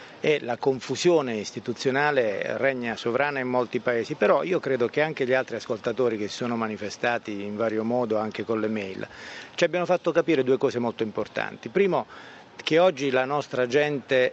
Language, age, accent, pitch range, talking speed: Italian, 40-59, native, 120-165 Hz, 175 wpm